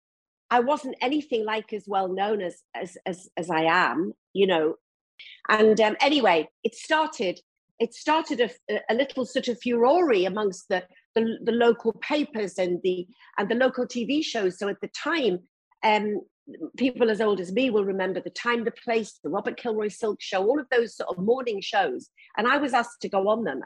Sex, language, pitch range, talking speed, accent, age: female, English, 185-260 Hz, 195 wpm, British, 50-69